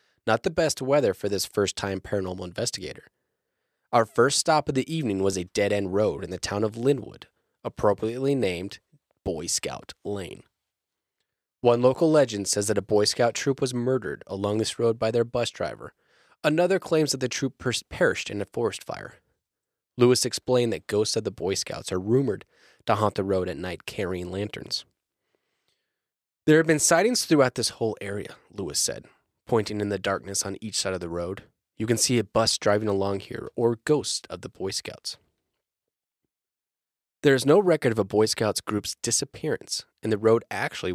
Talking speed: 180 wpm